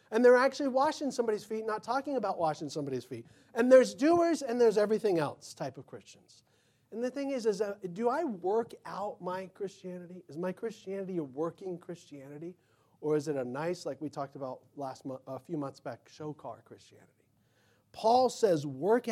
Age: 40-59